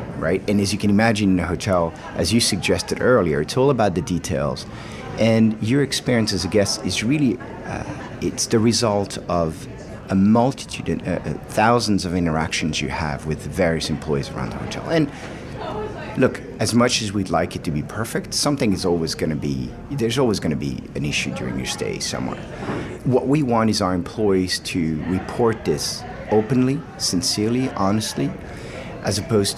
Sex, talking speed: male, 180 wpm